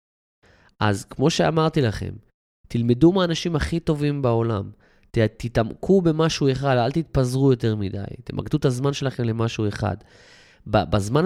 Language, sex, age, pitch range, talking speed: Hebrew, male, 20-39, 110-140 Hz, 125 wpm